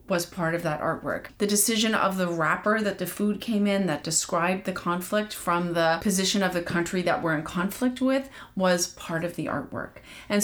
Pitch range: 170-195 Hz